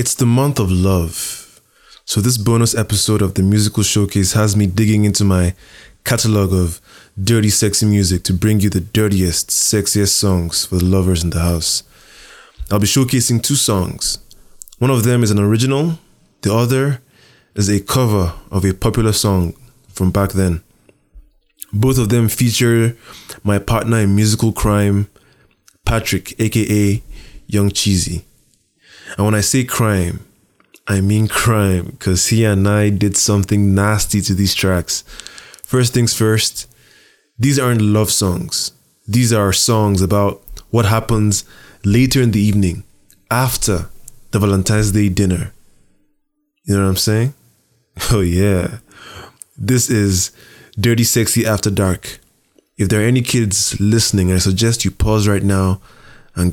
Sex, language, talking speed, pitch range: male, English, 145 wpm, 95-115 Hz